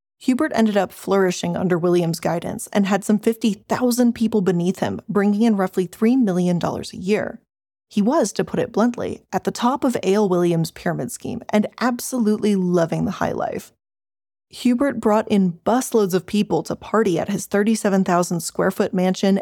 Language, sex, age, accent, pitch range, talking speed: English, female, 20-39, American, 185-235 Hz, 165 wpm